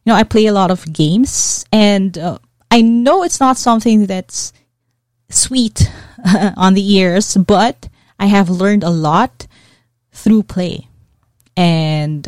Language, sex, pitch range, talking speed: English, female, 155-210 Hz, 140 wpm